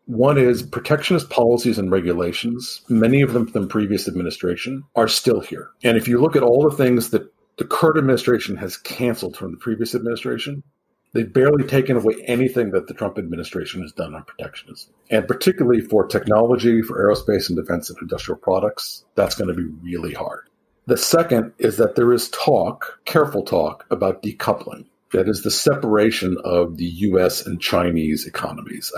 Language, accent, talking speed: English, American, 175 wpm